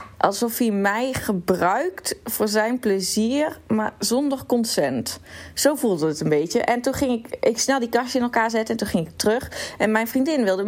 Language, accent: Dutch, Dutch